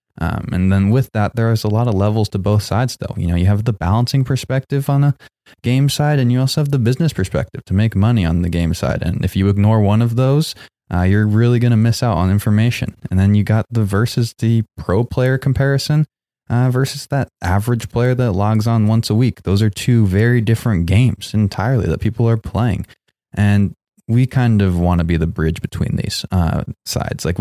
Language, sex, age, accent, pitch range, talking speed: English, male, 20-39, American, 90-115 Hz, 220 wpm